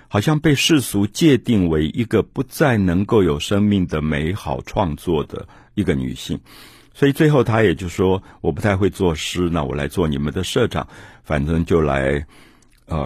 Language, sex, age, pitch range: Chinese, male, 50-69, 80-115 Hz